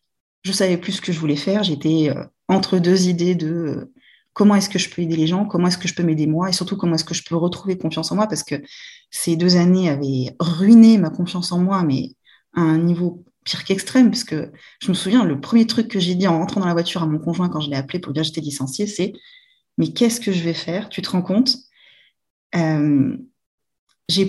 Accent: French